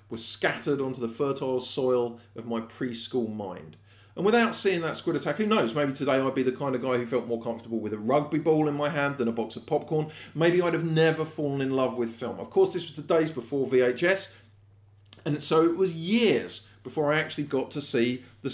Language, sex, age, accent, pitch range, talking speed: English, male, 40-59, British, 115-160 Hz, 230 wpm